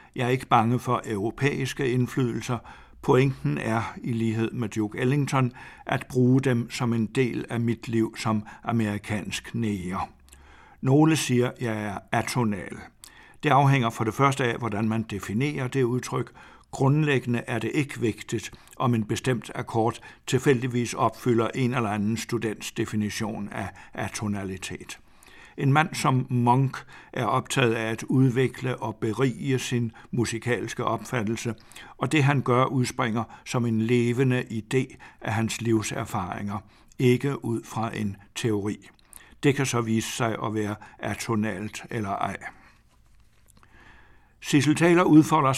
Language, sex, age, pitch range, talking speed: Danish, male, 60-79, 110-130 Hz, 140 wpm